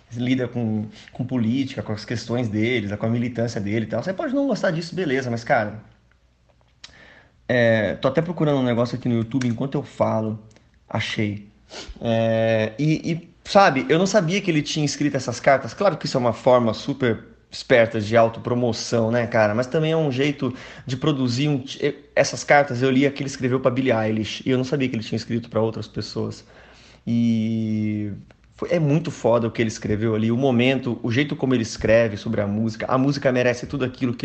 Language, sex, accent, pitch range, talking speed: Portuguese, male, Brazilian, 110-135 Hz, 205 wpm